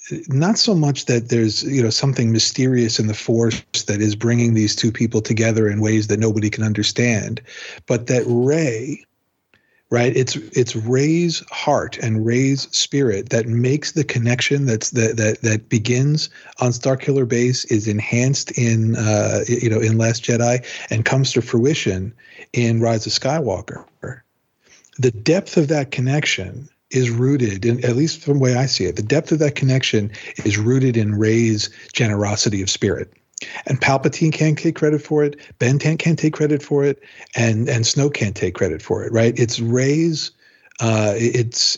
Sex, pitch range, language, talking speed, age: male, 110-135 Hz, English, 170 wpm, 40-59